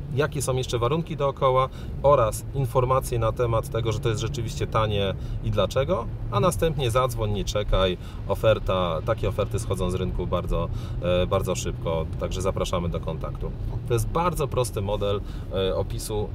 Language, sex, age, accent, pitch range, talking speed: Polish, male, 40-59, native, 105-125 Hz, 150 wpm